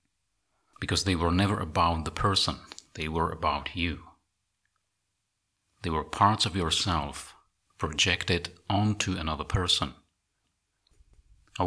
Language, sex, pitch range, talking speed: English, male, 80-100 Hz, 110 wpm